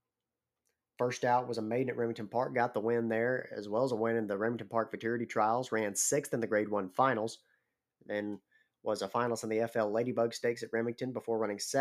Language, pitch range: English, 105-125 Hz